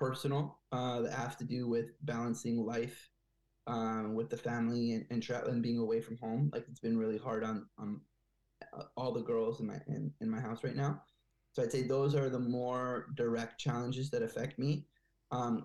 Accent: American